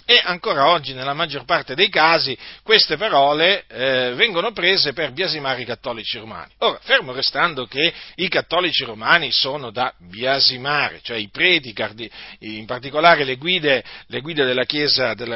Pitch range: 125-165 Hz